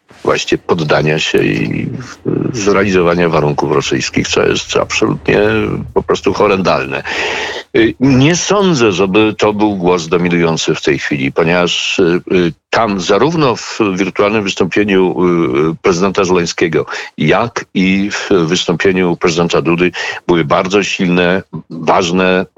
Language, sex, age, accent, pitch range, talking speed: Polish, male, 50-69, native, 85-125 Hz, 110 wpm